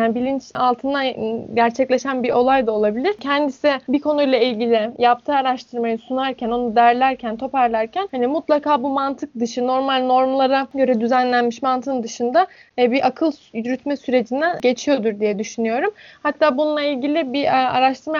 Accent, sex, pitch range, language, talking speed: native, female, 245-295 Hz, Turkish, 135 wpm